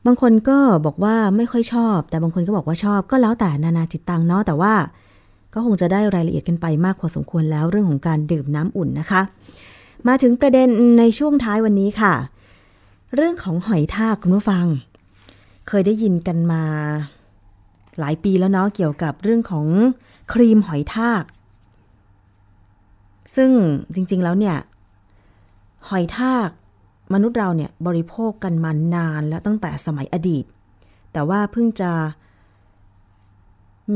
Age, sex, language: 20-39, female, Thai